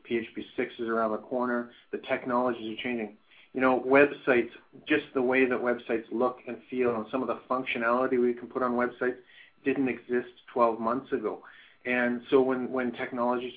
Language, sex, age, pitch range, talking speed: English, male, 40-59, 115-130 Hz, 180 wpm